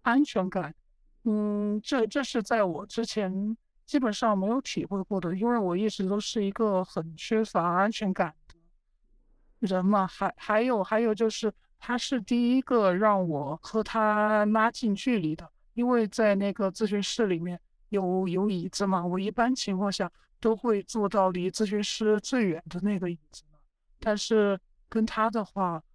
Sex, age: male, 60-79